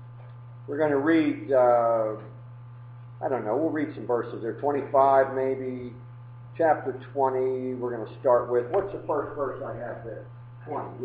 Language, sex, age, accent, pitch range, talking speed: English, male, 50-69, American, 120-135 Hz, 165 wpm